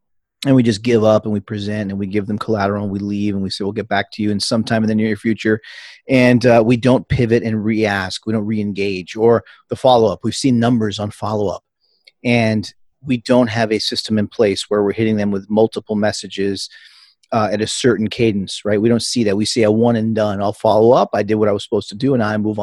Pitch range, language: 105-135 Hz, English